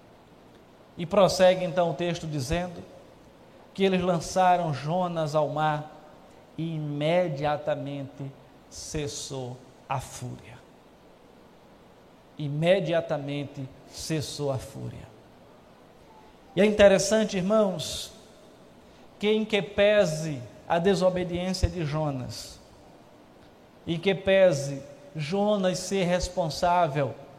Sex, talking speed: male, 85 wpm